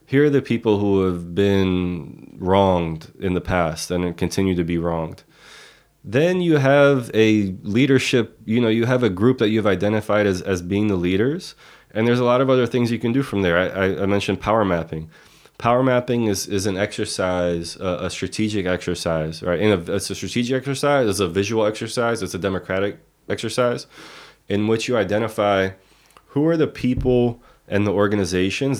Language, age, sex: Swedish, 20-39, male